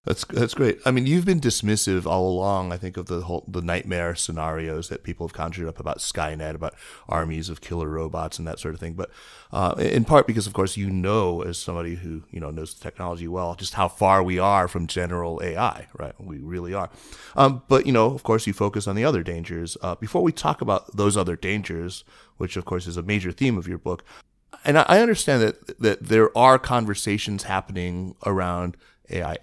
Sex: male